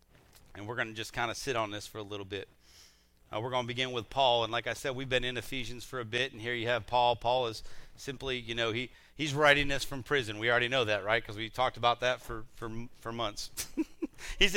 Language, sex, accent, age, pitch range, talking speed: English, male, American, 40-59, 125-180 Hz, 260 wpm